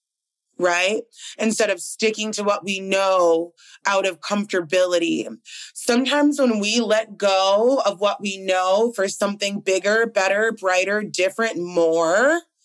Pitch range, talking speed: 190-235 Hz, 130 wpm